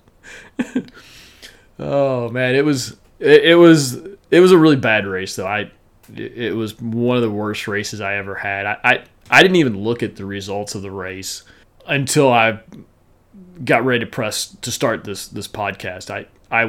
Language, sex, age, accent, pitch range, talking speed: English, male, 30-49, American, 100-115 Hz, 180 wpm